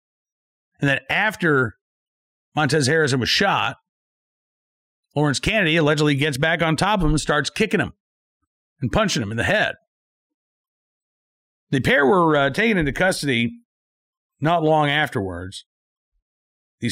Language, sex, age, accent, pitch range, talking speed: English, male, 50-69, American, 140-190 Hz, 130 wpm